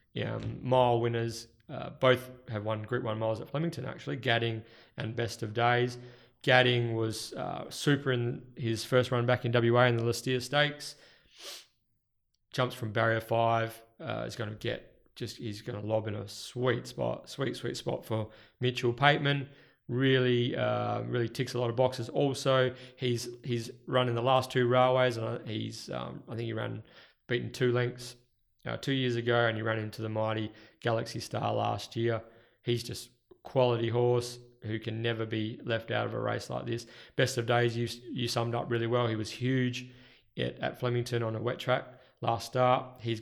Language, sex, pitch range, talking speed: English, male, 115-125 Hz, 190 wpm